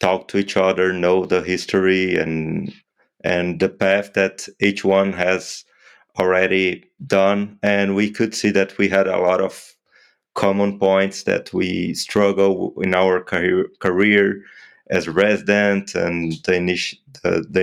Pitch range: 95-100 Hz